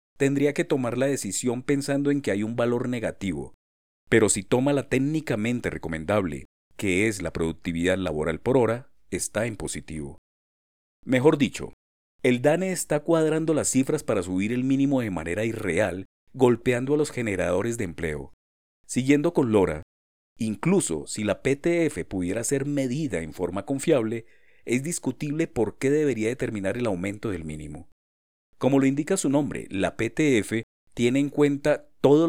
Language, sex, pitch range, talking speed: Spanish, male, 85-135 Hz, 155 wpm